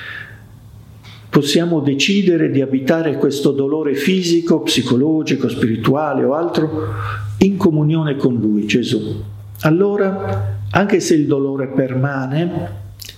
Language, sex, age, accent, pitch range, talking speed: Italian, male, 50-69, native, 110-150 Hz, 100 wpm